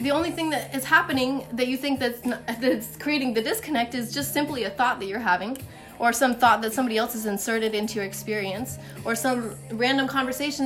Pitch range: 220-270 Hz